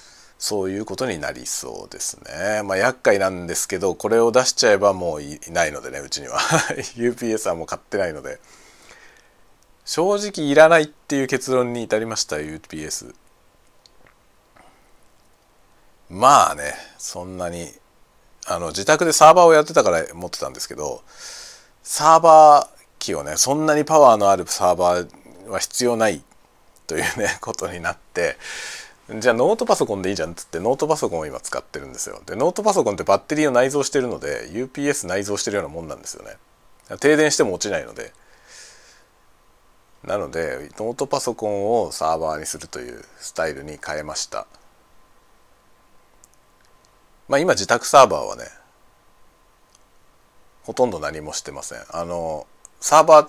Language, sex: Japanese, male